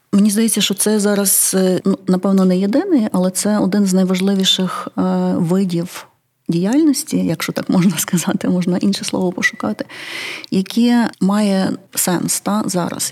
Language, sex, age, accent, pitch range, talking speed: Ukrainian, female, 30-49, native, 175-200 Hz, 130 wpm